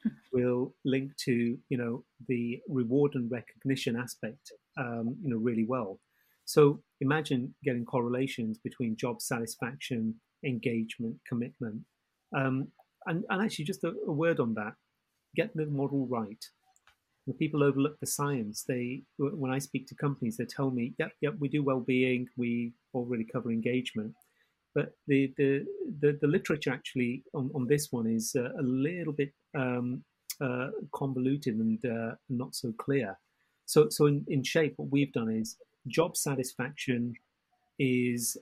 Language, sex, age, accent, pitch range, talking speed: English, male, 40-59, British, 120-145 Hz, 150 wpm